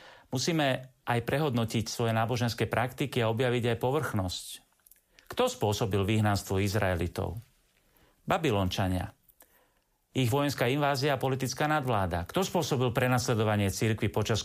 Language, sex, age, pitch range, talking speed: Slovak, male, 40-59, 110-145 Hz, 110 wpm